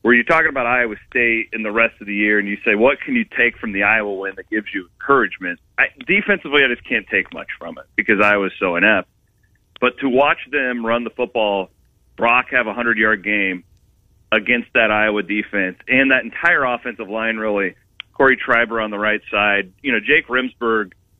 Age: 30-49